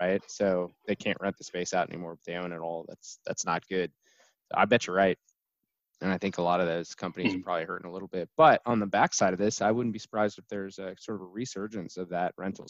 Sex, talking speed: male, 265 wpm